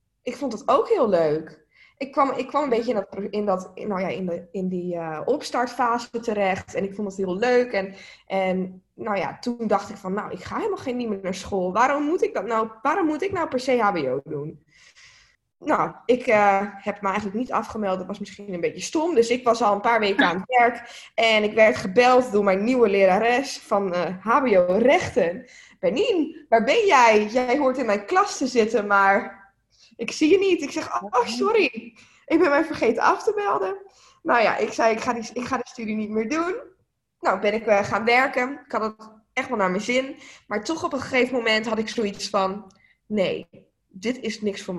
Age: 20-39